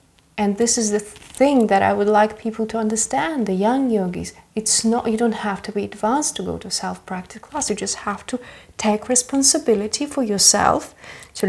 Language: Polish